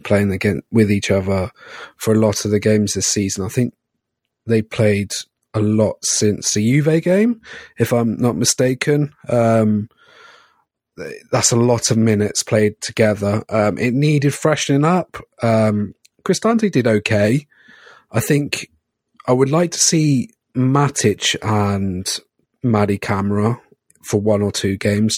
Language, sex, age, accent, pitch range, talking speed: English, male, 30-49, British, 105-125 Hz, 145 wpm